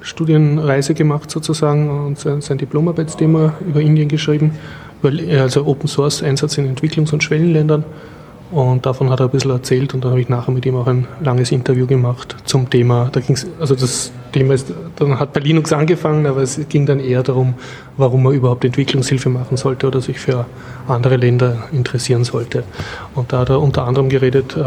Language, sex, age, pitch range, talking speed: German, male, 30-49, 130-150 Hz, 180 wpm